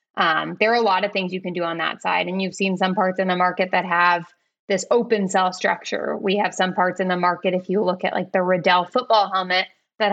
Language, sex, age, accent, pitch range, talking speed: English, female, 20-39, American, 180-205 Hz, 260 wpm